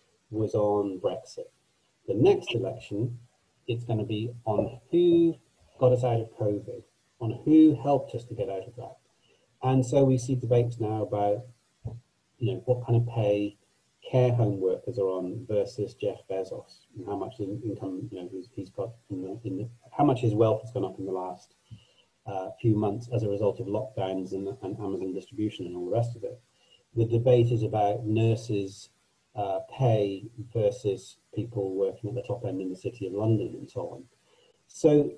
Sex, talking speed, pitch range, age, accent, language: male, 180 wpm, 105-130 Hz, 30-49, British, English